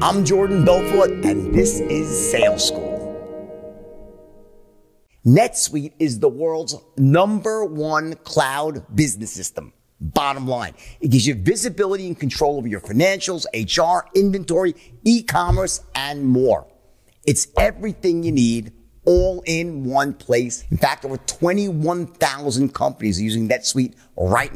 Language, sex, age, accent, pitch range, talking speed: English, male, 50-69, American, 120-165 Hz, 125 wpm